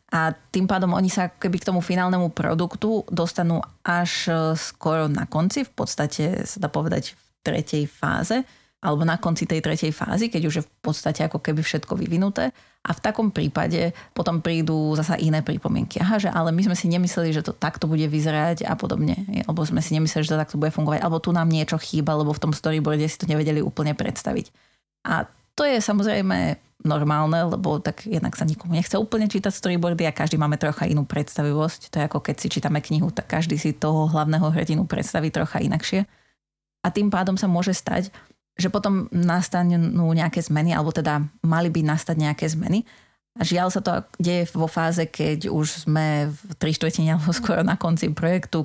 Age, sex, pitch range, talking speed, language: 30-49, female, 155-180 Hz, 190 wpm, Slovak